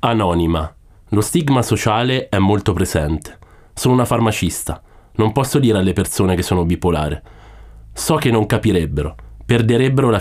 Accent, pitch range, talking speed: native, 90-120 Hz, 140 wpm